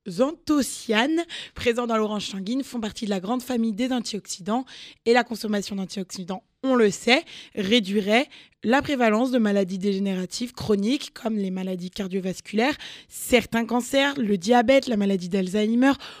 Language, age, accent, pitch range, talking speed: French, 20-39, French, 205-250 Hz, 140 wpm